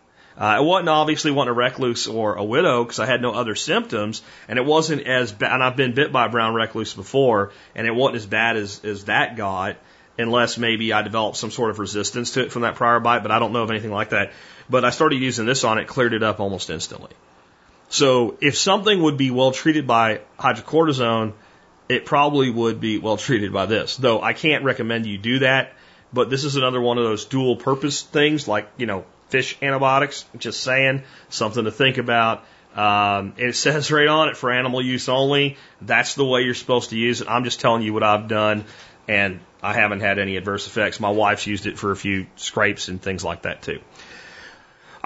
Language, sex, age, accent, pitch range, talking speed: English, male, 30-49, American, 105-135 Hz, 220 wpm